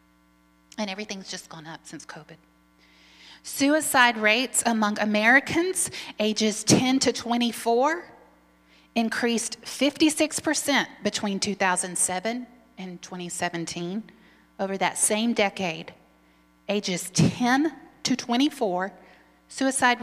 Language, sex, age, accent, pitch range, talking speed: English, female, 30-49, American, 150-235 Hz, 90 wpm